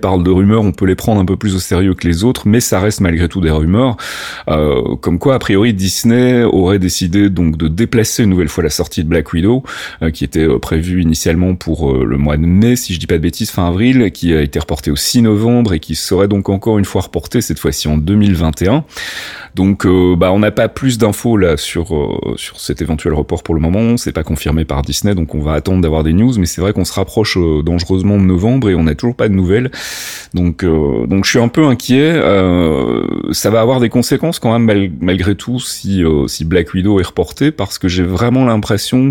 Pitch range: 80-105 Hz